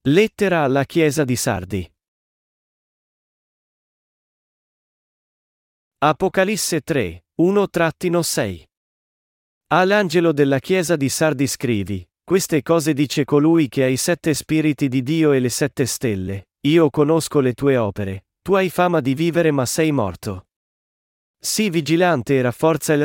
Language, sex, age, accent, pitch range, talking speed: Italian, male, 40-59, native, 120-165 Hz, 120 wpm